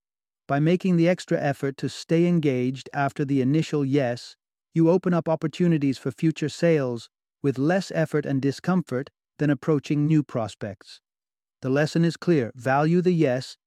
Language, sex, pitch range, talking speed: English, male, 130-155 Hz, 155 wpm